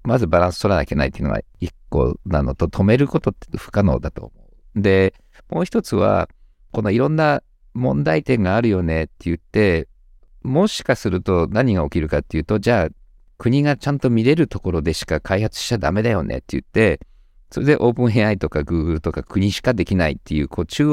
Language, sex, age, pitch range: Japanese, male, 50-69, 85-125 Hz